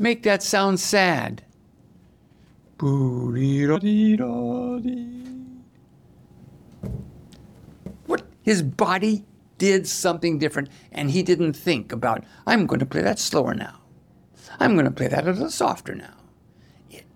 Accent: American